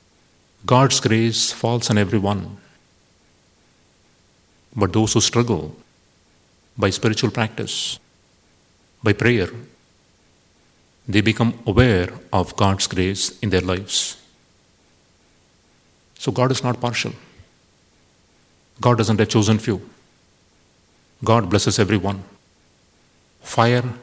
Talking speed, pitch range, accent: 90 wpm, 100-115 Hz, Indian